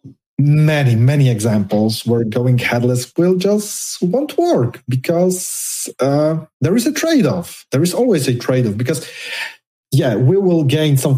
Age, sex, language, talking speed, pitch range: 30-49, male, English, 145 wpm, 110-160 Hz